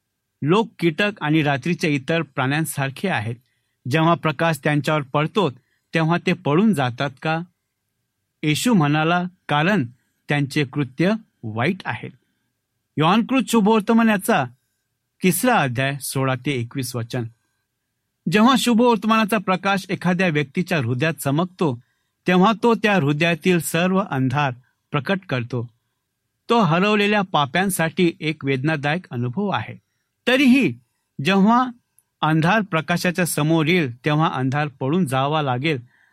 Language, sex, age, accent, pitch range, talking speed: Marathi, male, 60-79, native, 130-190 Hz, 110 wpm